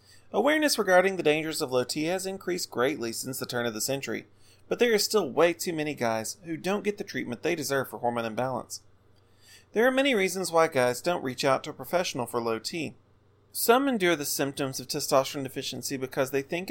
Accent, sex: American, male